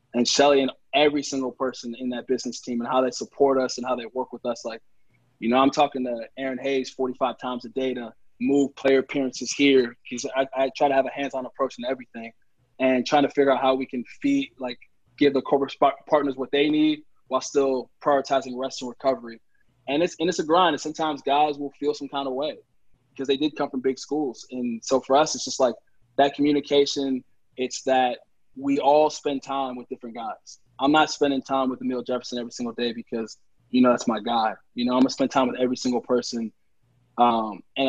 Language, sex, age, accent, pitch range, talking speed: English, male, 20-39, American, 125-140 Hz, 225 wpm